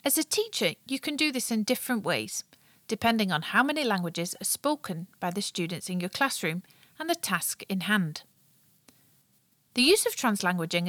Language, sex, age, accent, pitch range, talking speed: English, female, 40-59, British, 180-250 Hz, 175 wpm